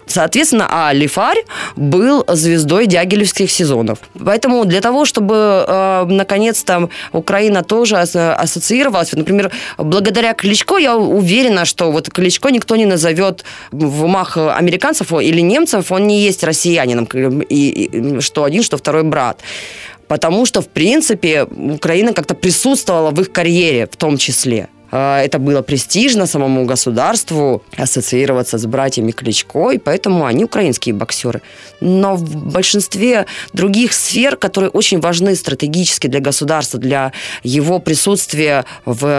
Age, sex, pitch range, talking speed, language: 20-39, female, 145-195 Hz, 130 wpm, Ukrainian